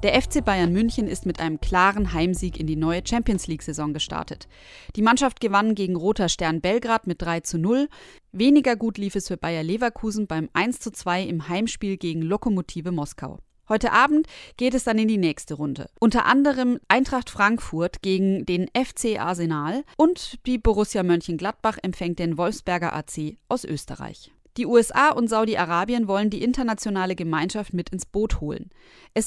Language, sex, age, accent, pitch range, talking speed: German, female, 30-49, German, 175-225 Hz, 165 wpm